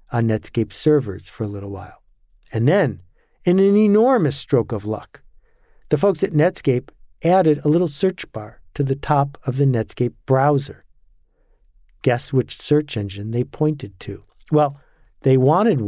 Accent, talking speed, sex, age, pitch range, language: American, 155 wpm, male, 50-69, 110-150 Hz, English